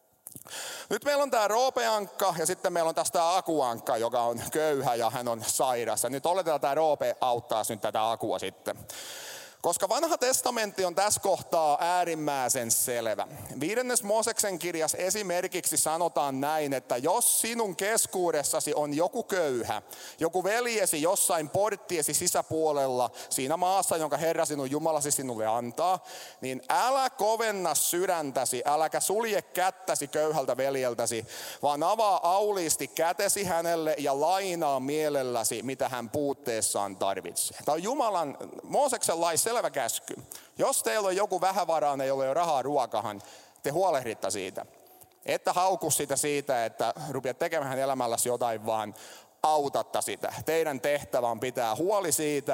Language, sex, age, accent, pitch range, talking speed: Finnish, male, 30-49, native, 130-185 Hz, 135 wpm